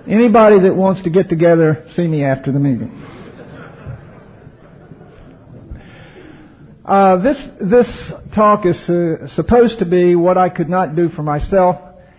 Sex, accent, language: male, American, English